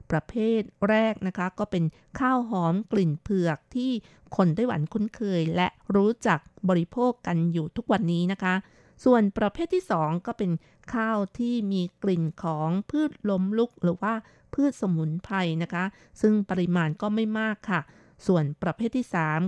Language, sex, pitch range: Thai, female, 175-225 Hz